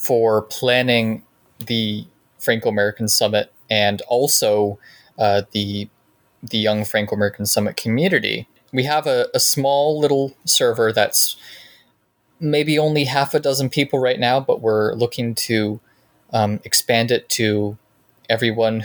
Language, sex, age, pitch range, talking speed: English, male, 20-39, 105-120 Hz, 125 wpm